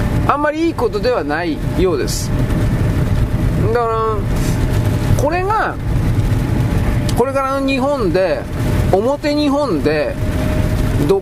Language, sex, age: Japanese, male, 40-59